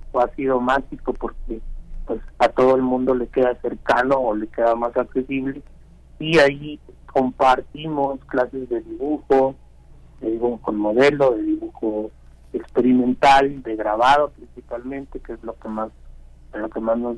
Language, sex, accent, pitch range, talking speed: Spanish, male, Mexican, 105-130 Hz, 145 wpm